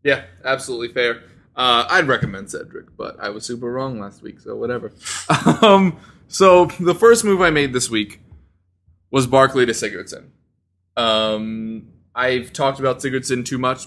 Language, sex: English, male